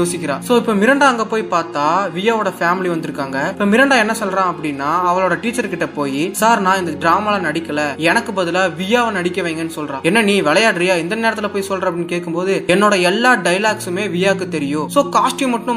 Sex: male